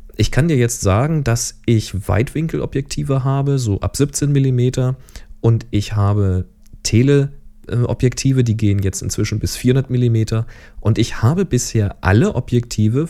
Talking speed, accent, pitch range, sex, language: 130 wpm, German, 100-135 Hz, male, German